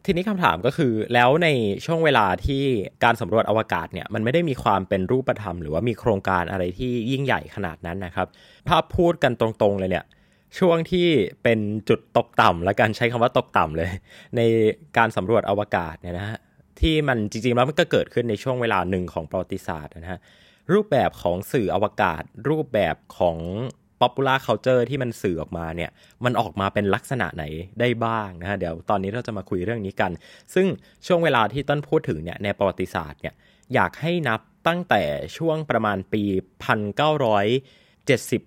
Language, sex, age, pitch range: Thai, male, 20-39, 95-130 Hz